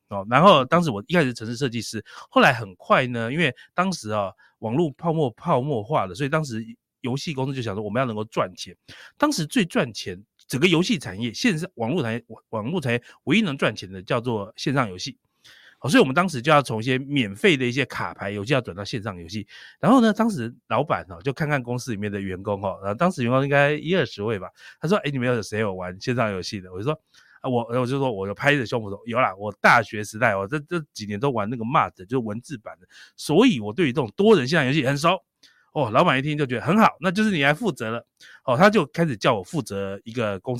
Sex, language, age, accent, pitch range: male, Chinese, 30-49, native, 110-155 Hz